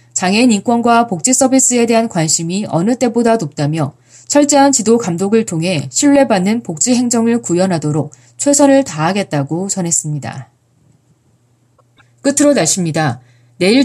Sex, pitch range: female, 150-235 Hz